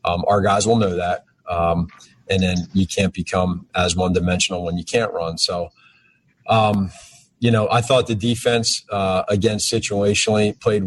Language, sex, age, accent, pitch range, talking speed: English, male, 30-49, American, 90-100 Hz, 170 wpm